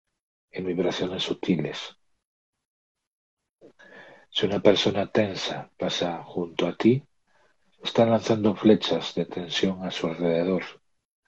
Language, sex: Spanish, male